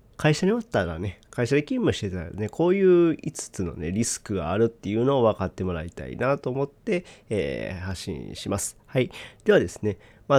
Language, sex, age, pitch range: Japanese, male, 40-59, 100-145 Hz